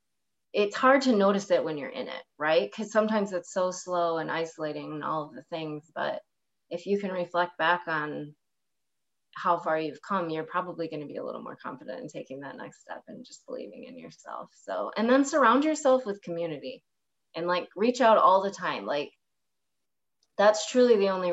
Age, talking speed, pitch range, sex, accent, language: 20-39, 200 wpm, 160-200 Hz, female, American, English